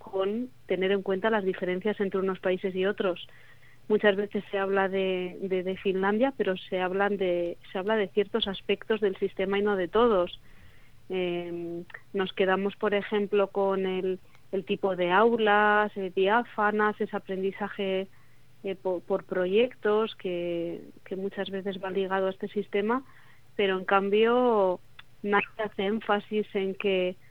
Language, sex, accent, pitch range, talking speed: Spanish, female, Spanish, 185-205 Hz, 155 wpm